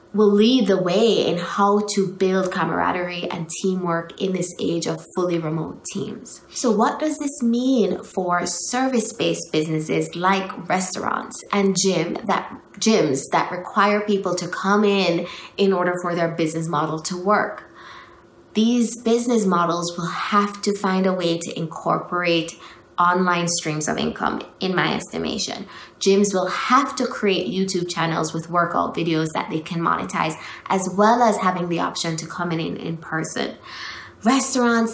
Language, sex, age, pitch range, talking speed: English, female, 20-39, 175-210 Hz, 150 wpm